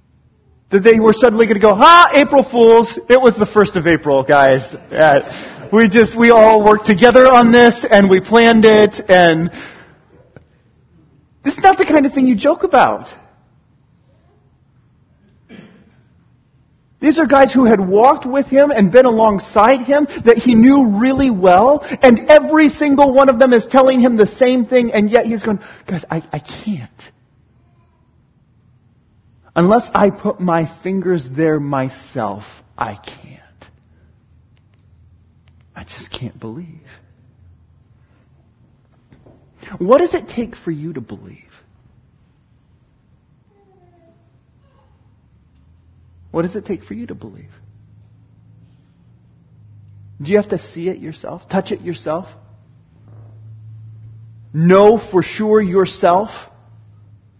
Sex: male